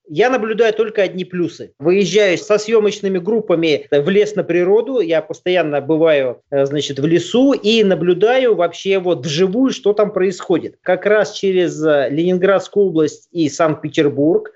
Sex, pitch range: male, 175-220 Hz